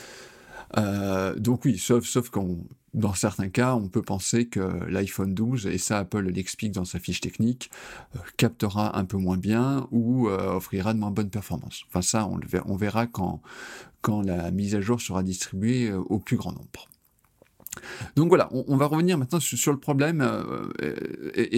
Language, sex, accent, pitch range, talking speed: French, male, French, 100-140 Hz, 190 wpm